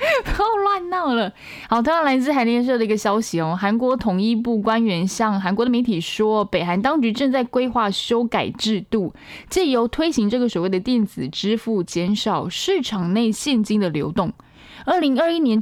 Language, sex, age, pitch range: Chinese, female, 20-39, 185-245 Hz